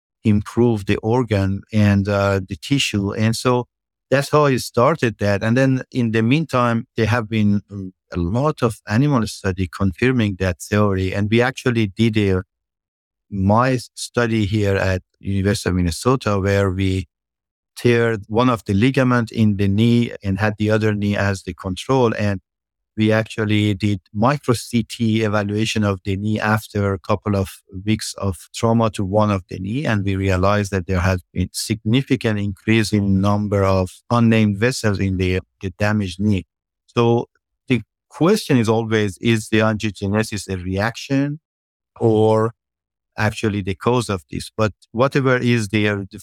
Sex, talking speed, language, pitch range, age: male, 160 wpm, English, 95-115 Hz, 50-69